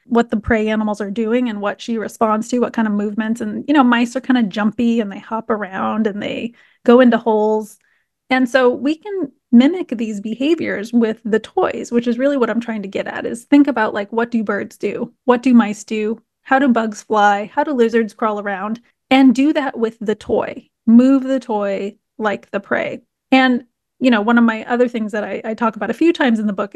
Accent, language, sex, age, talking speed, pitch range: American, English, female, 30-49, 230 wpm, 215-245 Hz